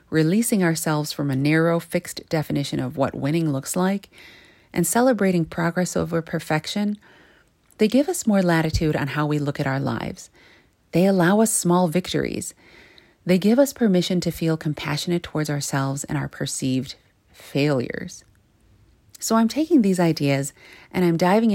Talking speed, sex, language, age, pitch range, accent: 155 wpm, female, English, 30-49, 150-195 Hz, American